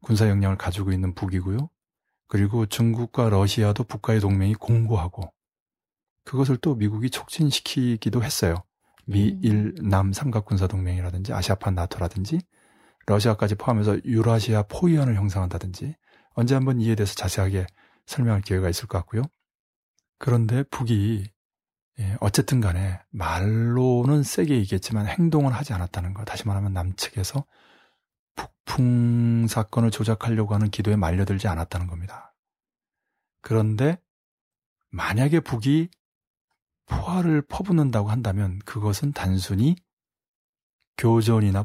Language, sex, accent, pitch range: Korean, male, native, 100-120 Hz